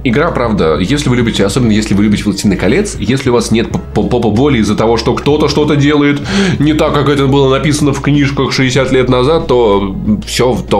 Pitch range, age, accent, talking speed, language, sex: 95-140 Hz, 20-39, native, 205 wpm, Russian, male